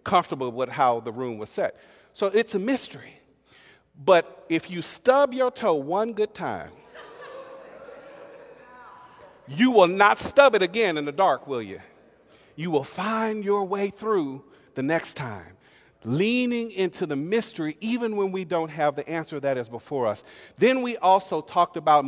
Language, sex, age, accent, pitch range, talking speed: English, male, 50-69, American, 145-220 Hz, 165 wpm